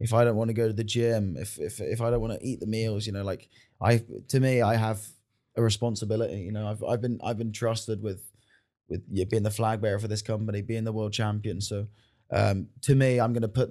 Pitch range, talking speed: 110-125 Hz, 255 wpm